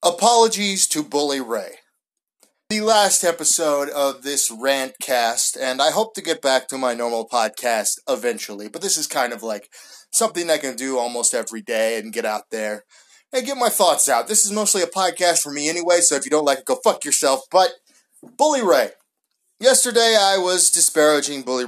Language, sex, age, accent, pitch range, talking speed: English, male, 30-49, American, 145-235 Hz, 190 wpm